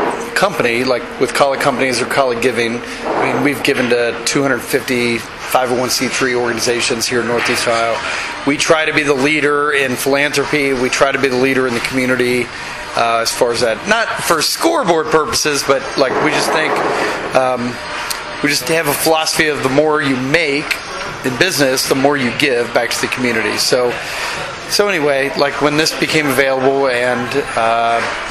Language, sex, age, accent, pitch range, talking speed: English, male, 30-49, American, 130-160 Hz, 175 wpm